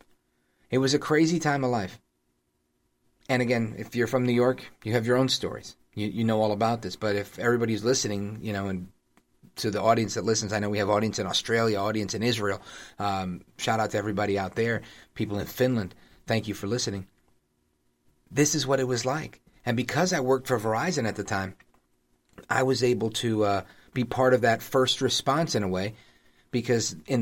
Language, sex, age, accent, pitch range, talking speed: English, male, 40-59, American, 95-125 Hz, 205 wpm